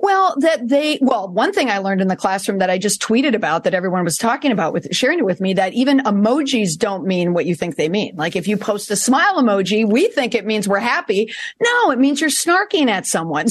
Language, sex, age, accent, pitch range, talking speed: English, female, 40-59, American, 195-270 Hz, 250 wpm